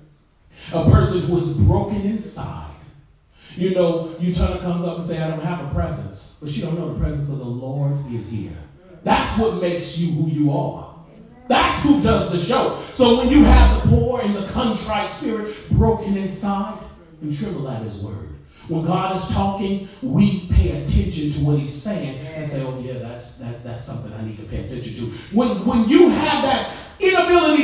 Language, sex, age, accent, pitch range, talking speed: English, male, 40-59, American, 155-250 Hz, 200 wpm